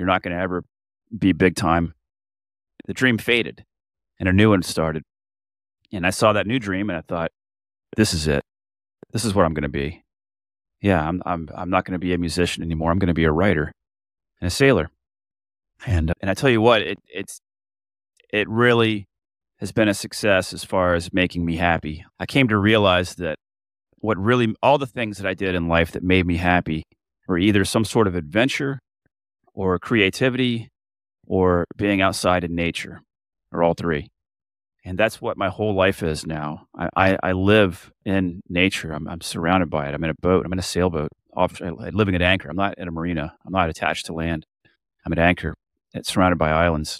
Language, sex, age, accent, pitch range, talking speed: English, male, 30-49, American, 80-100 Hz, 205 wpm